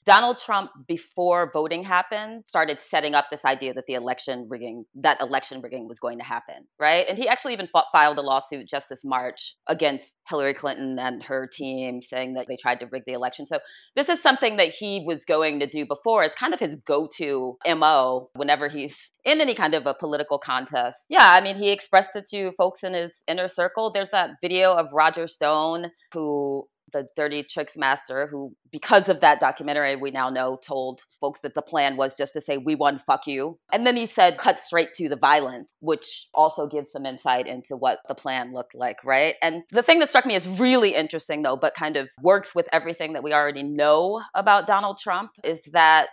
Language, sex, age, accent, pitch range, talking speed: English, female, 30-49, American, 140-180 Hz, 210 wpm